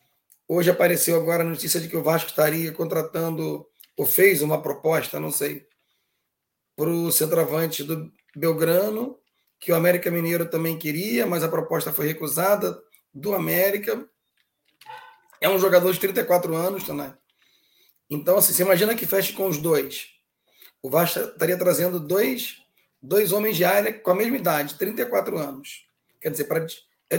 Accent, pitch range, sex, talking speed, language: Brazilian, 160-195 Hz, male, 150 wpm, Portuguese